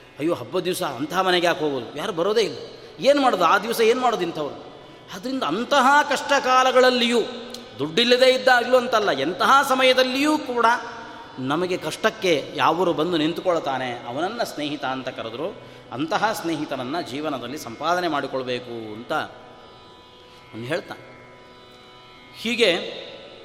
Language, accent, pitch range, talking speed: Kannada, native, 155-245 Hz, 115 wpm